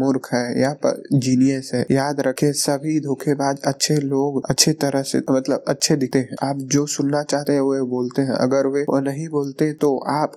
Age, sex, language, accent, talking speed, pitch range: 20-39, male, Hindi, native, 205 wpm, 135-145 Hz